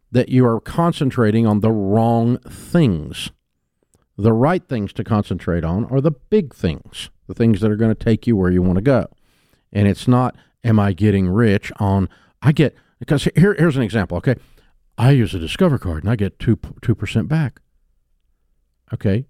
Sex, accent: male, American